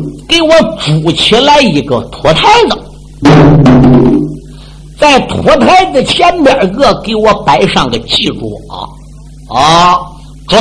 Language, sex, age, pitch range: Chinese, male, 50-69, 140-180 Hz